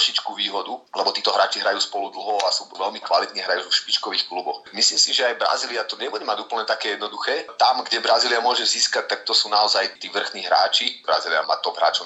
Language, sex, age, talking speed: Slovak, male, 30-49, 210 wpm